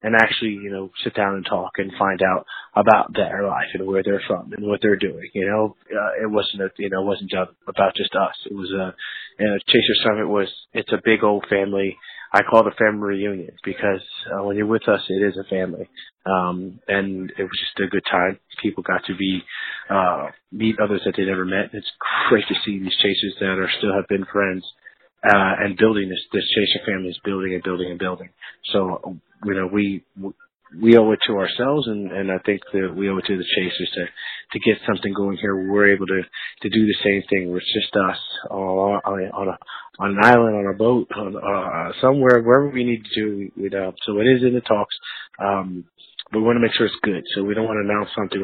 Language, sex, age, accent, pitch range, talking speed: English, male, 20-39, American, 95-110 Hz, 235 wpm